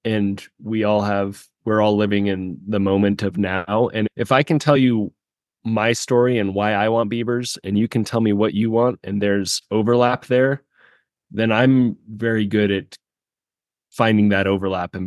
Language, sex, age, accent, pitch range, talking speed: English, male, 20-39, American, 95-115 Hz, 185 wpm